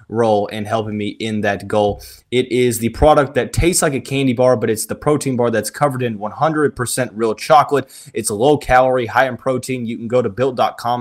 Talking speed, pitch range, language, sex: 220 wpm, 115-145 Hz, English, male